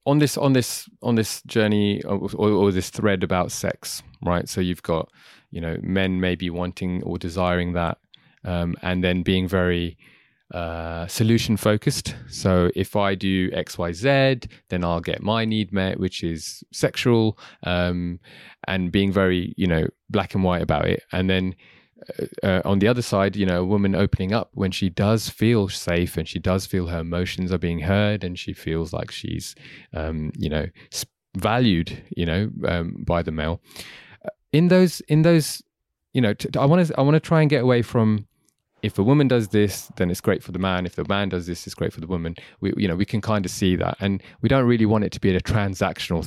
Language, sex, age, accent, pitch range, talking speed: English, male, 20-39, British, 90-110 Hz, 205 wpm